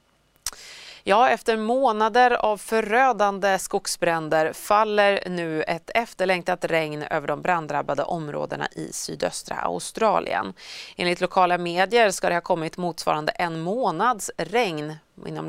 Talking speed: 115 wpm